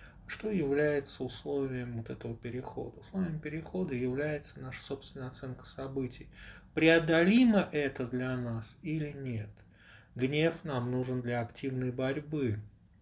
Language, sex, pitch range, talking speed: Russian, male, 115-150 Hz, 115 wpm